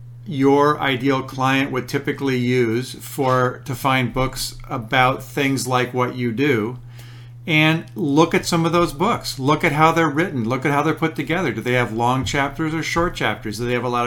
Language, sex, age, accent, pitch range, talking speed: English, male, 50-69, American, 120-150 Hz, 200 wpm